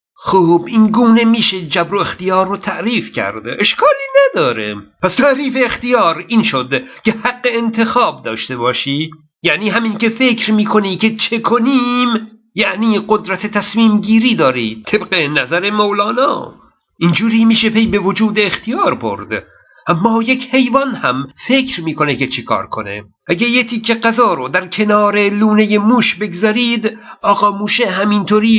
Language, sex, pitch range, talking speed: Persian, male, 185-235 Hz, 140 wpm